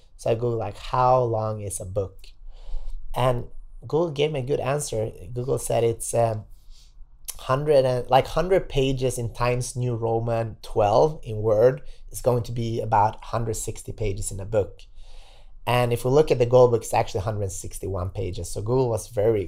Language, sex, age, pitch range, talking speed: English, male, 30-49, 105-130 Hz, 180 wpm